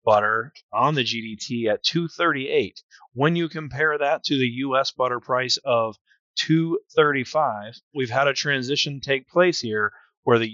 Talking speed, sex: 150 wpm, male